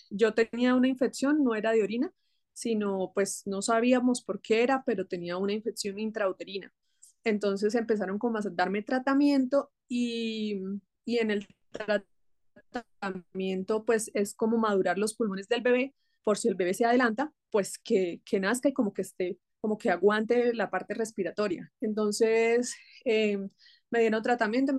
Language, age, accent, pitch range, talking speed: Spanish, 20-39, Colombian, 205-245 Hz, 155 wpm